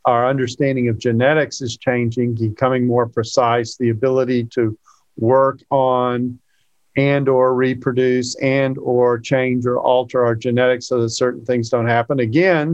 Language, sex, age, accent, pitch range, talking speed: English, male, 50-69, American, 120-145 Hz, 145 wpm